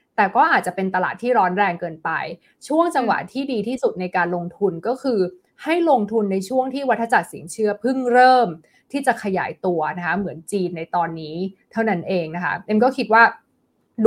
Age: 20-39